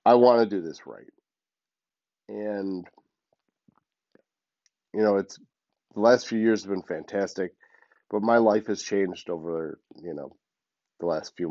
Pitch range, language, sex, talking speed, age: 85-110 Hz, English, male, 145 wpm, 40-59